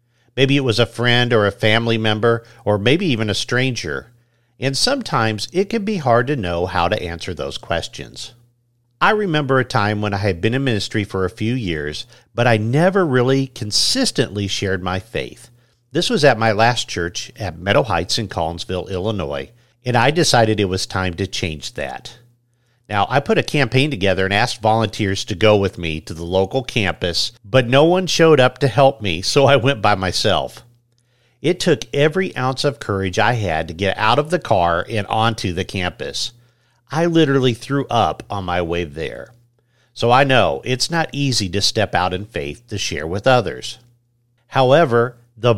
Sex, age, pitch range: male, 50-69, 100-130 Hz